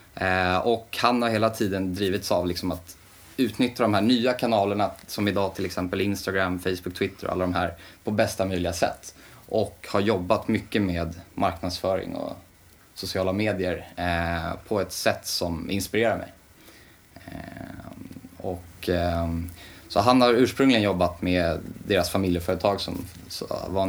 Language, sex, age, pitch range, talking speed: Swedish, male, 20-39, 90-100 Hz, 135 wpm